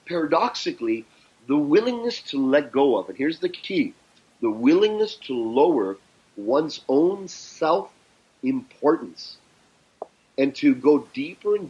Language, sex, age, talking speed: English, male, 40-59, 120 wpm